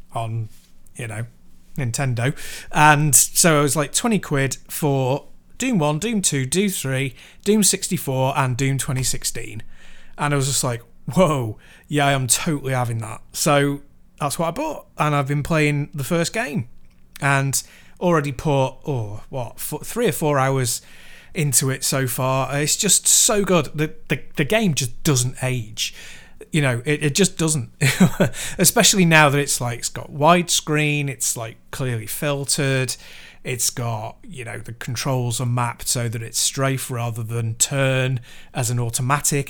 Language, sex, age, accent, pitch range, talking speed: English, male, 30-49, British, 120-155 Hz, 165 wpm